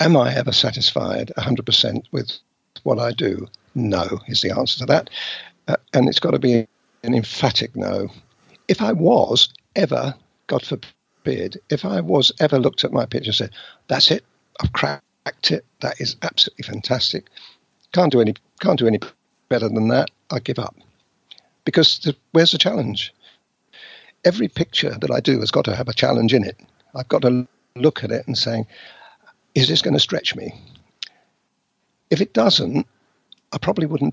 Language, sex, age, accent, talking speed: English, male, 50-69, British, 180 wpm